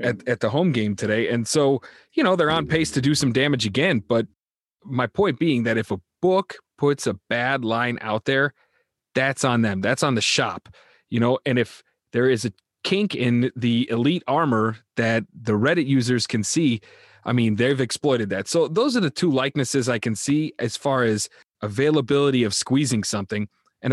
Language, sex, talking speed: English, male, 200 wpm